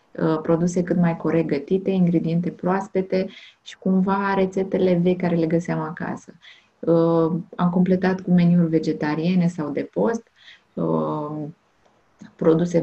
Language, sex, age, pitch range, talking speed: Romanian, female, 20-39, 160-190 Hz, 110 wpm